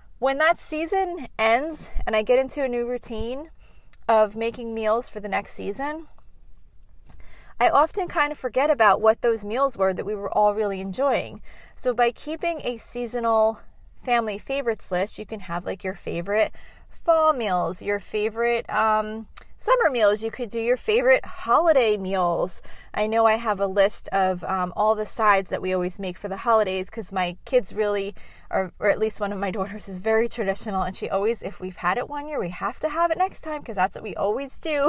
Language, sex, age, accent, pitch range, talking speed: English, female, 30-49, American, 200-255 Hz, 200 wpm